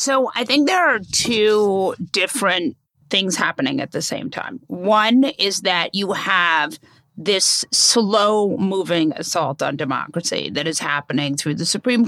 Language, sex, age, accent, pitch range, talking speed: English, female, 40-59, American, 180-225 Hz, 150 wpm